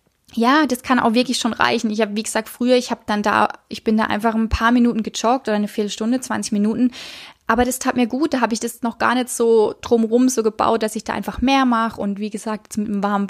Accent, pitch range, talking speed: German, 225-255 Hz, 255 wpm